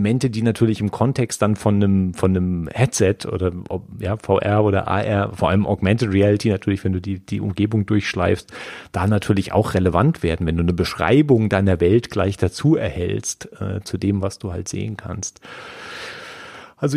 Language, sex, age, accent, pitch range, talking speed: German, male, 30-49, German, 105-125 Hz, 175 wpm